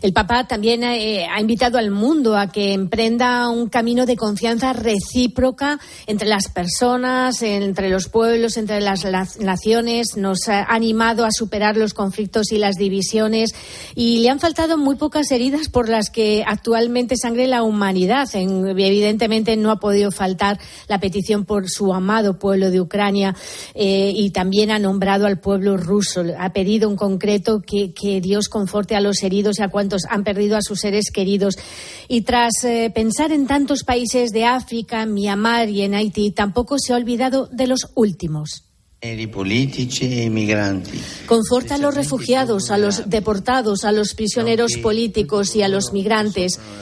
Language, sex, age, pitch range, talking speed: Spanish, female, 30-49, 195-235 Hz, 160 wpm